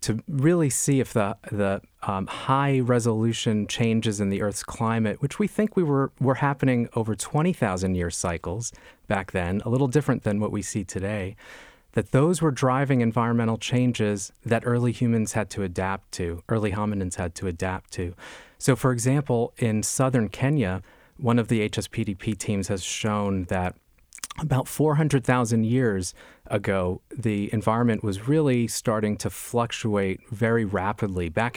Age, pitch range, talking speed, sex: 30-49, 100-130 Hz, 160 wpm, male